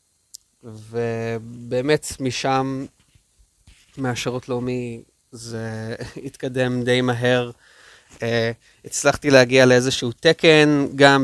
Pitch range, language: 115-130 Hz, English